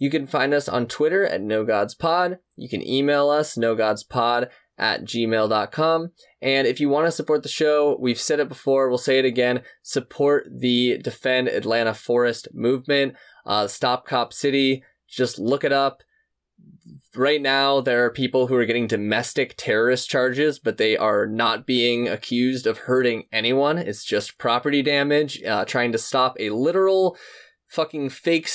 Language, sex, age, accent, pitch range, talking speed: English, male, 20-39, American, 110-140 Hz, 160 wpm